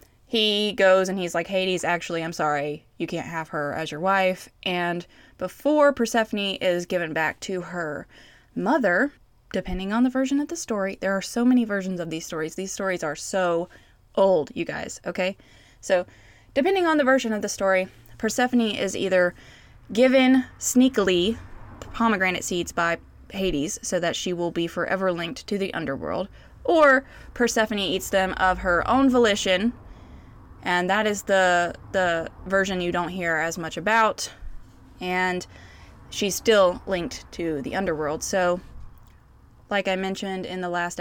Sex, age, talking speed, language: female, 20-39, 160 wpm, English